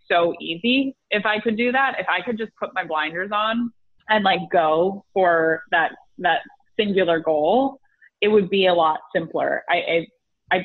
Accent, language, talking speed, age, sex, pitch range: American, English, 180 wpm, 20-39, female, 165-200 Hz